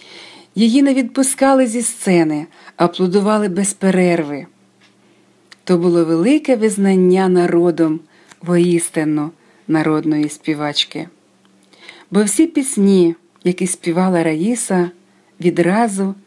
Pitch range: 170-225 Hz